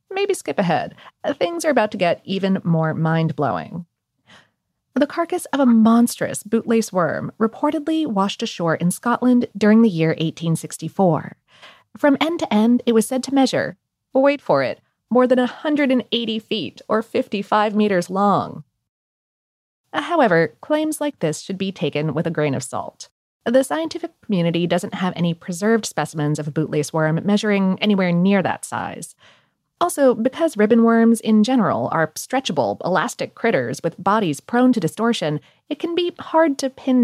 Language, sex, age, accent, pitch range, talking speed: English, female, 30-49, American, 180-275 Hz, 160 wpm